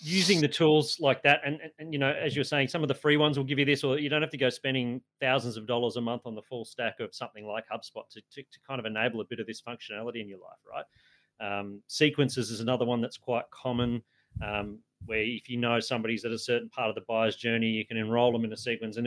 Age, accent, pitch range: 30-49, Australian, 115-140 Hz